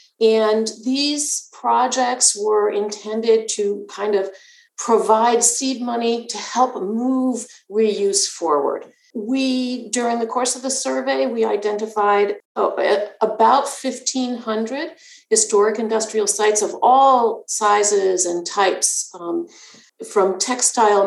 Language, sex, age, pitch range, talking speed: English, female, 50-69, 195-250 Hz, 105 wpm